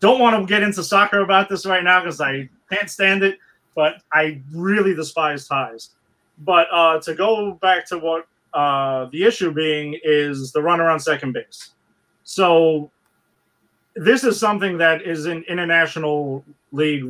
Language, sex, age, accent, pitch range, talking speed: English, male, 30-49, American, 145-185 Hz, 160 wpm